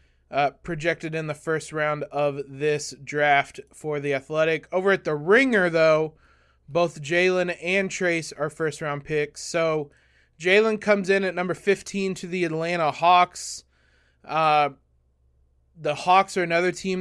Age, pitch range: 20-39, 150-185 Hz